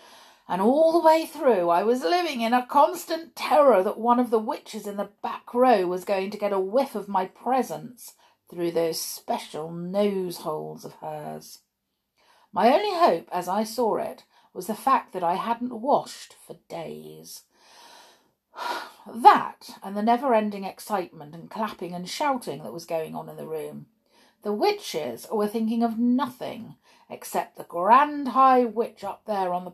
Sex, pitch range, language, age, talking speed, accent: female, 175-250 Hz, English, 50-69, 170 wpm, British